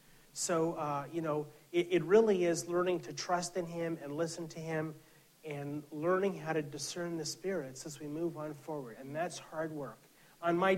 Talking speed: 195 wpm